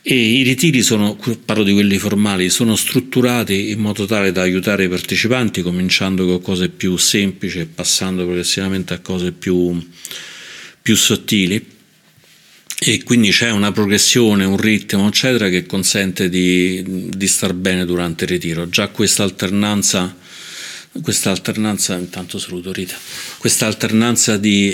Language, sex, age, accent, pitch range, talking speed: Italian, male, 40-59, native, 90-105 Hz, 140 wpm